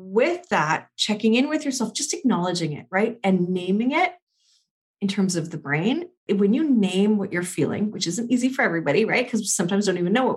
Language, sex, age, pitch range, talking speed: English, female, 30-49, 170-220 Hz, 210 wpm